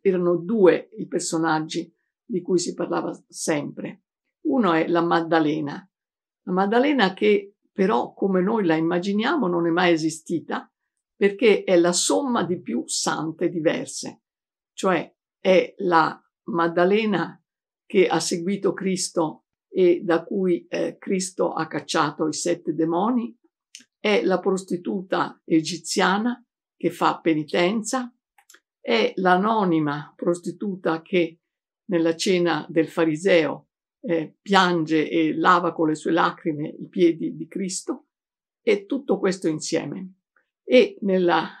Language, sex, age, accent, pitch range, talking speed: Italian, female, 50-69, native, 165-200 Hz, 120 wpm